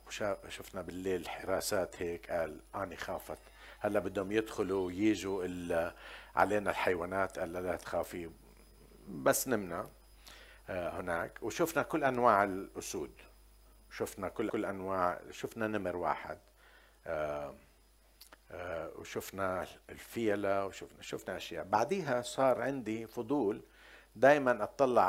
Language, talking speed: Arabic, 105 wpm